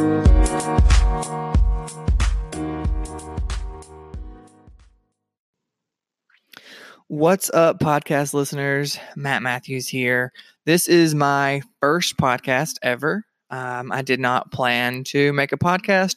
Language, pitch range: English, 125-150 Hz